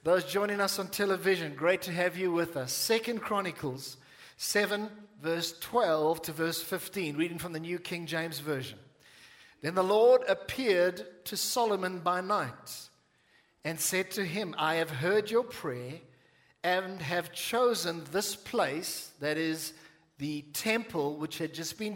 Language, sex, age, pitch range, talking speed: English, male, 50-69, 165-210 Hz, 155 wpm